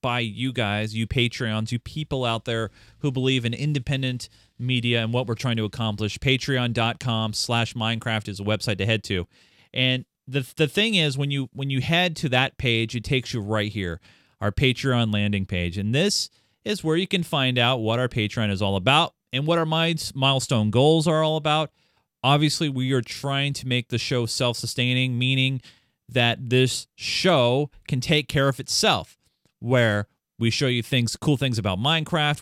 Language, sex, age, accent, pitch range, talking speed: English, male, 30-49, American, 110-135 Hz, 185 wpm